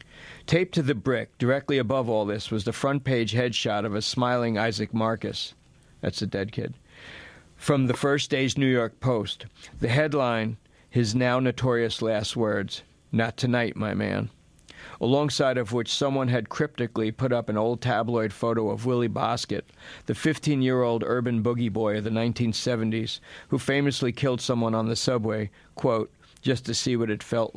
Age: 50-69